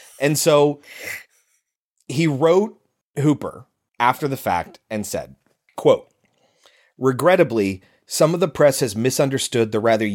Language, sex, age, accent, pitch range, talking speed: English, male, 30-49, American, 105-135 Hz, 120 wpm